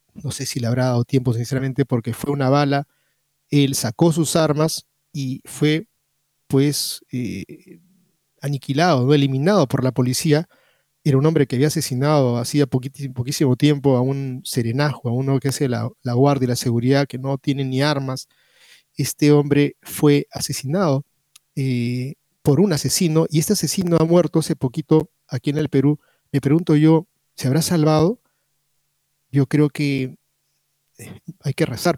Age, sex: 30-49, male